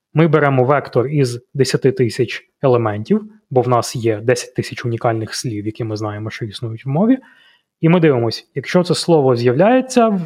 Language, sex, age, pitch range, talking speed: Ukrainian, male, 20-39, 120-160 Hz, 175 wpm